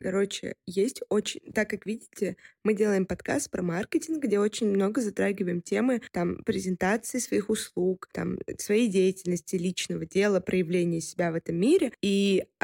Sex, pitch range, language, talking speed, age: female, 185-225 Hz, Russian, 140 wpm, 20-39